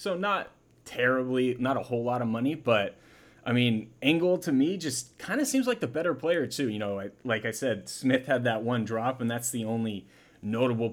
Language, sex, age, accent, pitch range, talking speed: English, male, 30-49, American, 110-130 Hz, 220 wpm